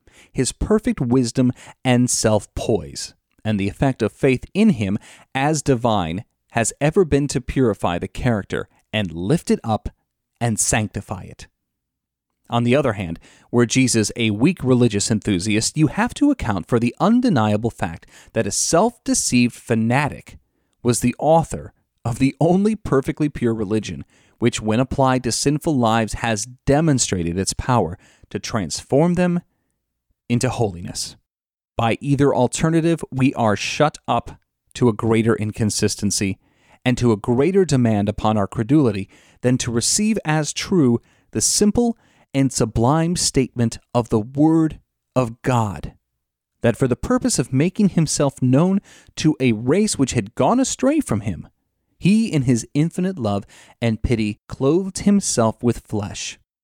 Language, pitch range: English, 110-150 Hz